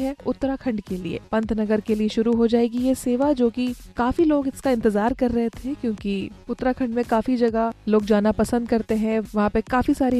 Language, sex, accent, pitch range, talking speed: Hindi, female, native, 215-260 Hz, 200 wpm